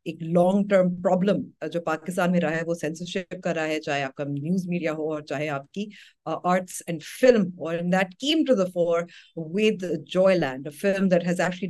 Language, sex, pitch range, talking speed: Urdu, female, 155-185 Hz, 170 wpm